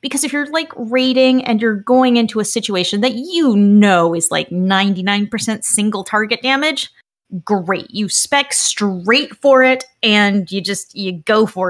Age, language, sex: 30-49, English, female